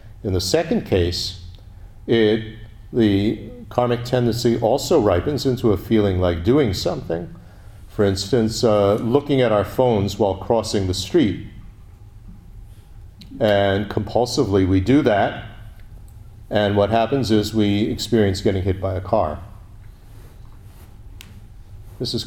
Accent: American